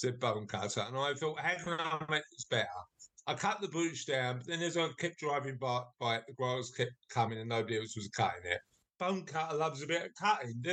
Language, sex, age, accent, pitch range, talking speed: English, male, 50-69, British, 125-170 Hz, 245 wpm